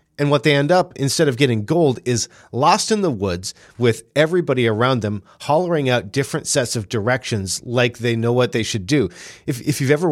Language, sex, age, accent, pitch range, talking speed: English, male, 40-59, American, 110-140 Hz, 210 wpm